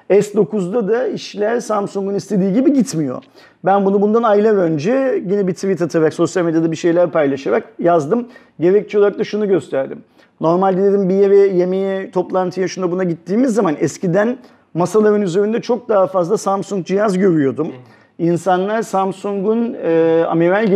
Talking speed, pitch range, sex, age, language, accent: 140 wpm, 155-195 Hz, male, 40-59, Turkish, native